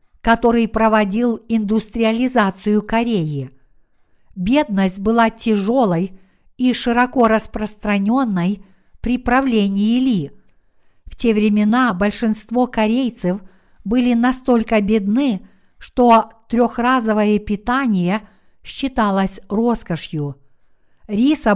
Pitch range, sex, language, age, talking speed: 210-245 Hz, female, Russian, 50-69, 75 wpm